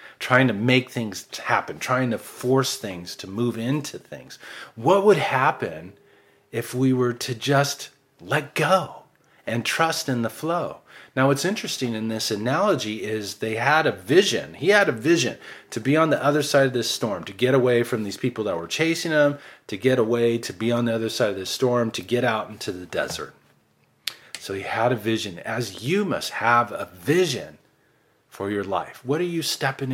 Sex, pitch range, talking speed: male, 110-140 Hz, 195 wpm